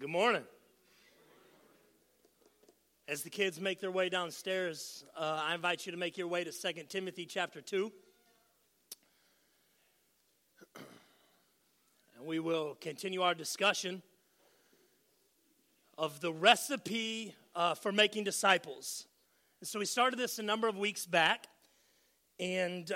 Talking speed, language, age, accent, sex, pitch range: 120 wpm, English, 40-59, American, male, 180-235 Hz